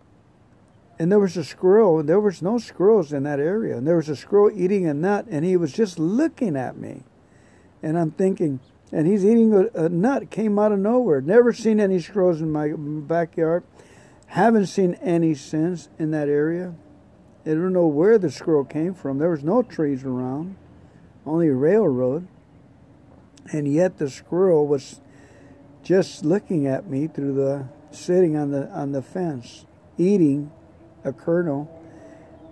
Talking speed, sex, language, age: 165 wpm, male, English, 50-69